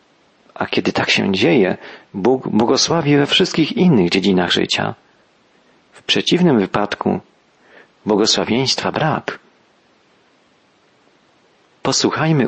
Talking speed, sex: 85 wpm, male